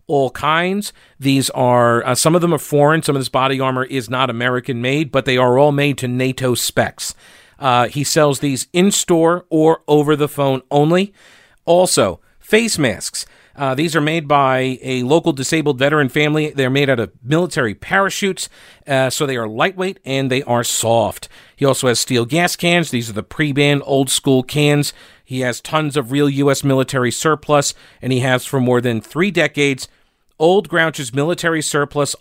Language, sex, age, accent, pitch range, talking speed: English, male, 50-69, American, 130-160 Hz, 185 wpm